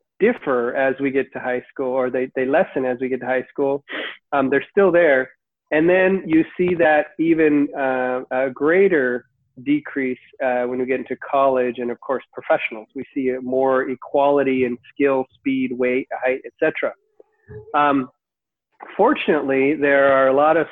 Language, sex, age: English, male, 40-59